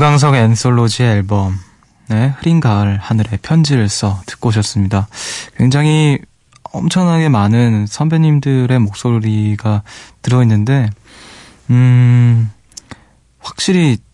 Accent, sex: native, male